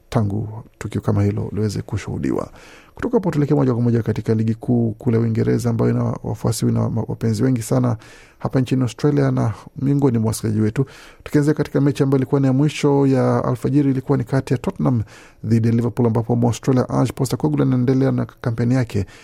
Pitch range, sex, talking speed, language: 110-135 Hz, male, 185 wpm, Swahili